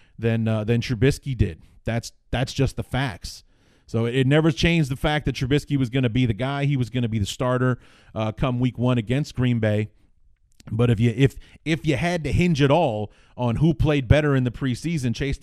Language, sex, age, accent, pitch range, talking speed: English, male, 30-49, American, 110-130 Hz, 225 wpm